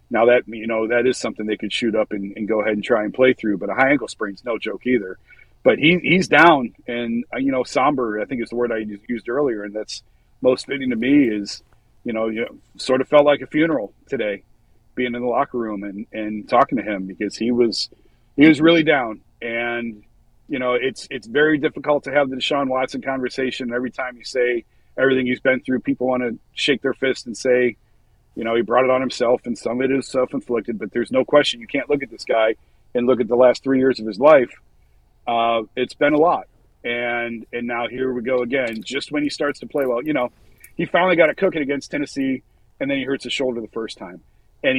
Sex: male